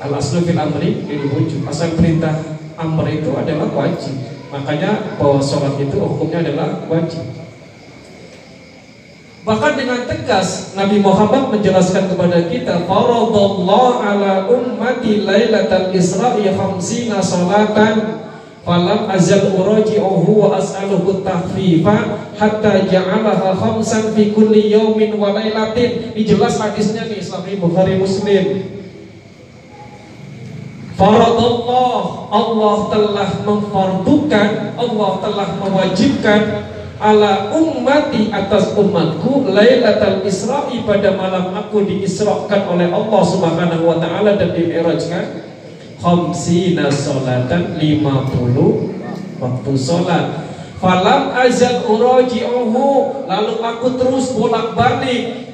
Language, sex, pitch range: Indonesian, male, 175-215 Hz